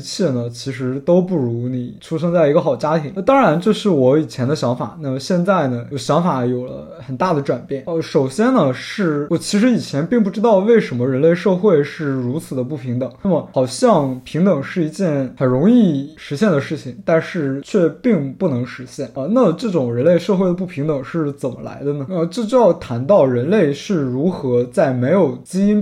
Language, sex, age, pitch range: Chinese, male, 20-39, 135-190 Hz